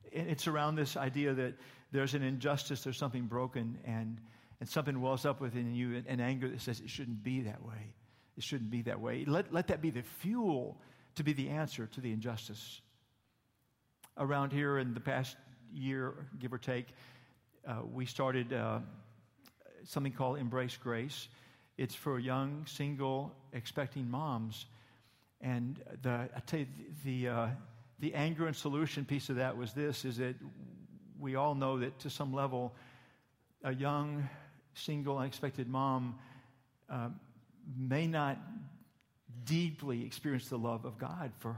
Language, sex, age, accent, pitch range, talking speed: English, male, 50-69, American, 125-145 Hz, 155 wpm